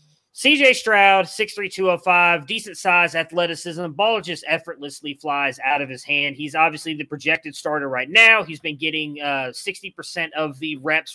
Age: 20-39